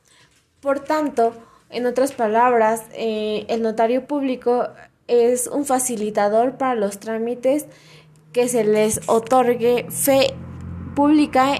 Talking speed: 110 wpm